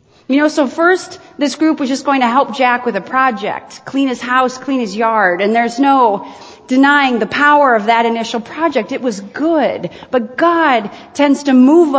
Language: English